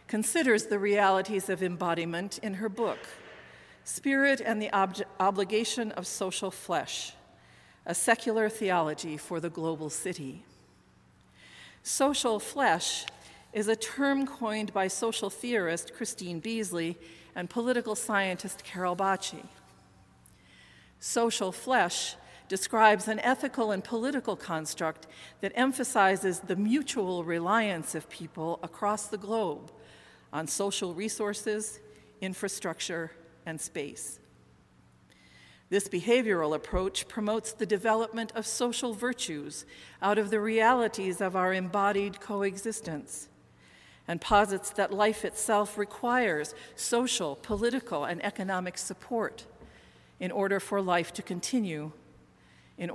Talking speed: 110 wpm